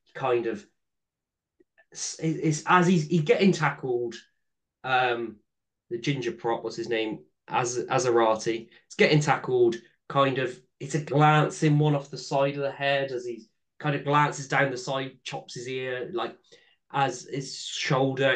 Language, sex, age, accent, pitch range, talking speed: English, male, 20-39, British, 115-160 Hz, 165 wpm